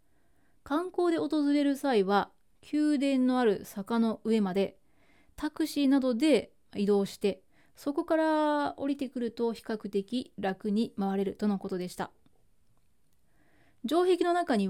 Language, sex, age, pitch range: Japanese, female, 20-39, 200-265 Hz